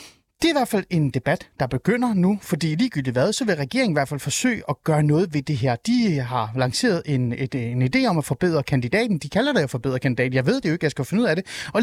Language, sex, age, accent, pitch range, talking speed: Danish, male, 30-49, native, 140-205 Hz, 280 wpm